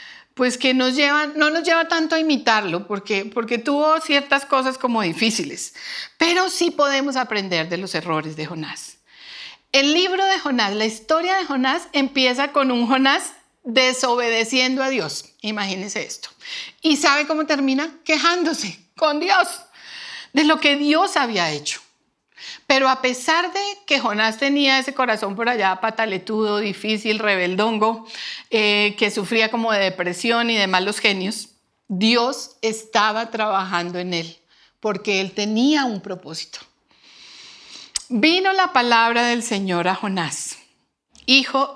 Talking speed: 140 wpm